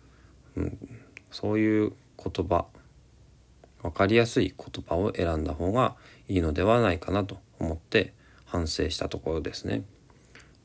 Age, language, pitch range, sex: 40-59, Japanese, 90-120 Hz, male